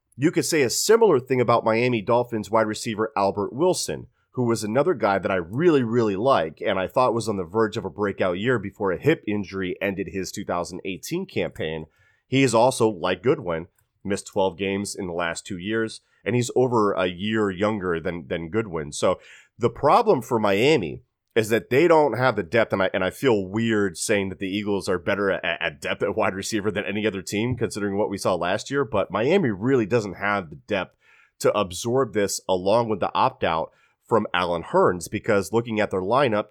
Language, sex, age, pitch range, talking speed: English, male, 30-49, 95-115 Hz, 205 wpm